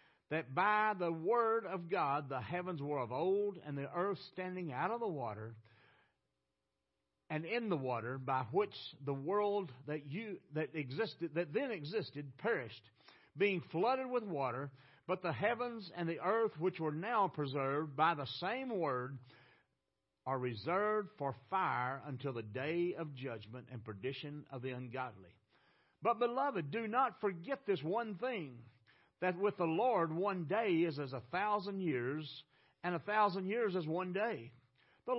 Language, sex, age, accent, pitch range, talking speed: English, male, 60-79, American, 135-200 Hz, 160 wpm